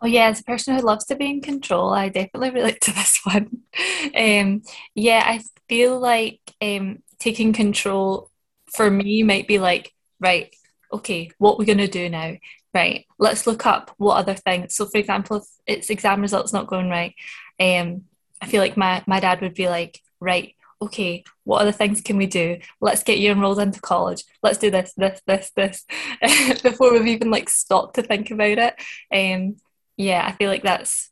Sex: female